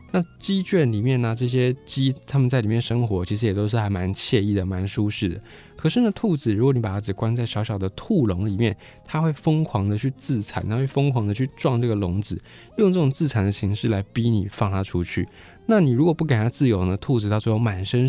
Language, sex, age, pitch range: Chinese, male, 20-39, 100-135 Hz